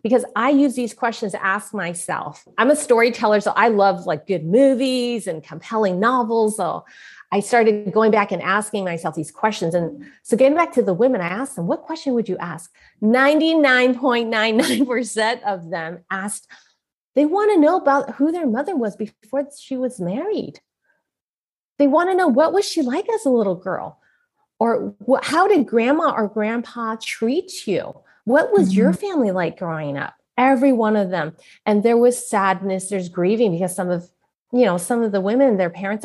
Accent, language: American, English